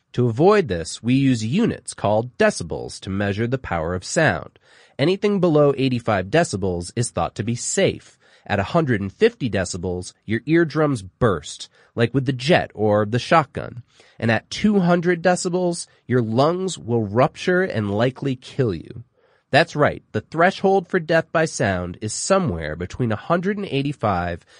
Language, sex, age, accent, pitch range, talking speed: English, male, 30-49, American, 110-165 Hz, 145 wpm